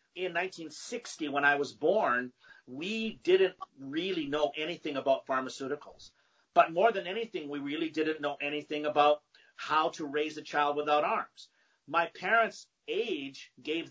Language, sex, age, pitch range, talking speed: English, male, 50-69, 140-185 Hz, 145 wpm